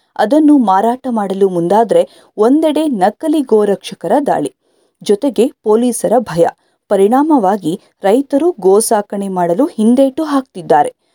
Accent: native